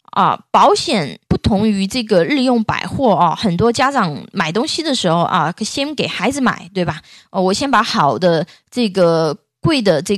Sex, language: female, Chinese